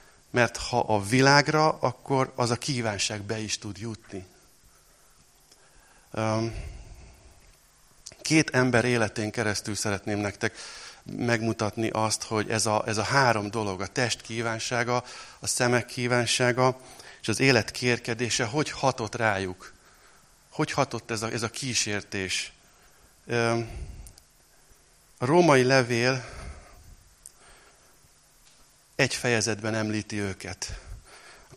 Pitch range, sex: 105-125 Hz, male